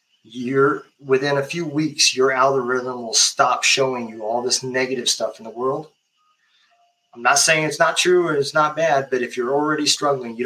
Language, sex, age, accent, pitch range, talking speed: English, male, 20-39, American, 125-160 Hz, 195 wpm